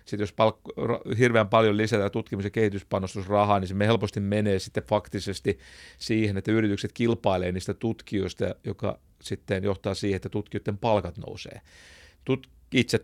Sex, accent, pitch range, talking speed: male, native, 95-110 Hz, 135 wpm